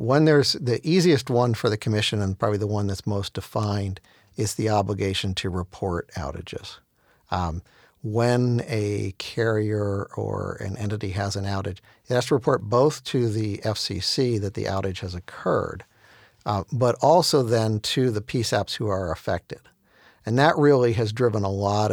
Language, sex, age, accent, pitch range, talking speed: English, male, 50-69, American, 100-120 Hz, 165 wpm